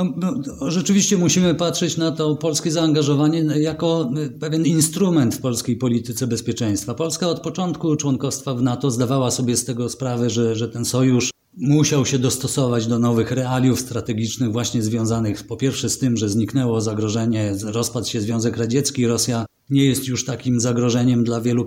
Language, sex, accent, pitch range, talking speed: Polish, male, native, 120-145 Hz, 160 wpm